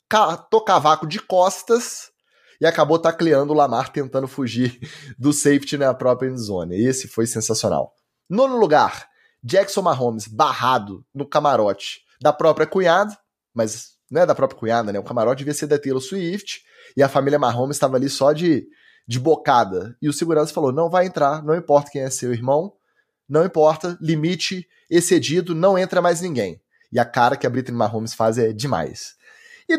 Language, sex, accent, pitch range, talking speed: Portuguese, male, Brazilian, 130-190 Hz, 175 wpm